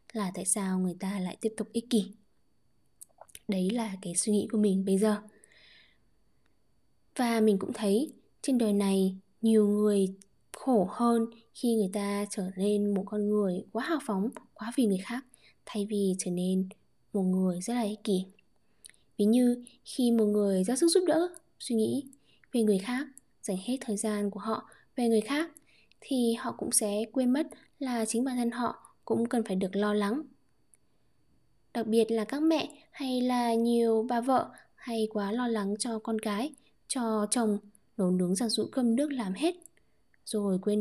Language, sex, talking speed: Vietnamese, female, 180 wpm